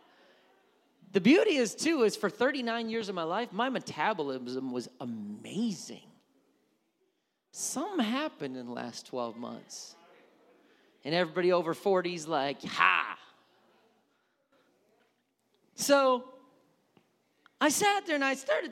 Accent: American